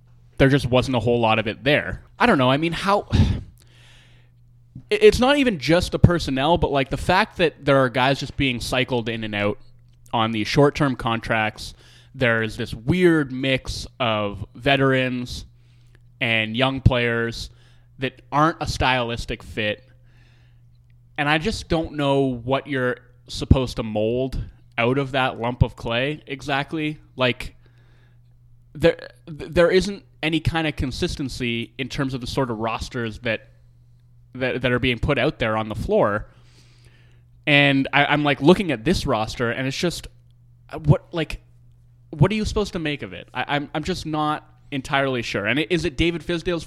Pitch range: 120-145 Hz